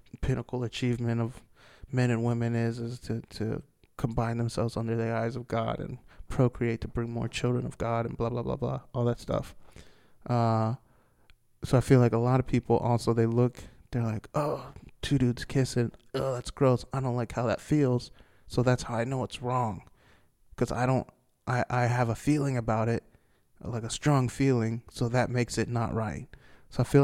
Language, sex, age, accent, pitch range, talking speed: English, male, 20-39, American, 115-125 Hz, 200 wpm